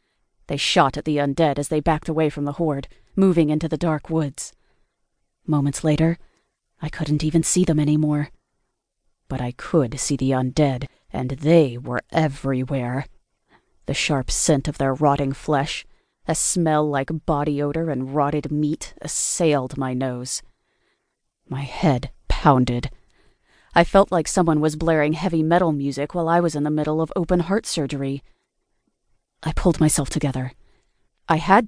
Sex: female